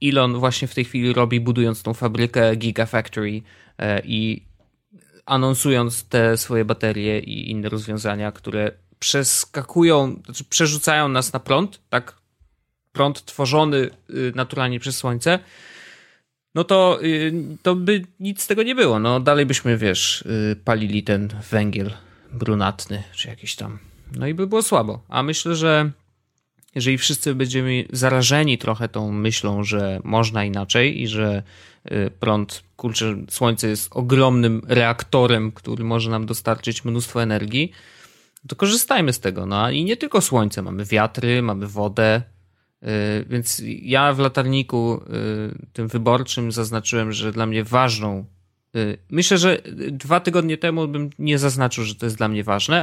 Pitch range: 105-140 Hz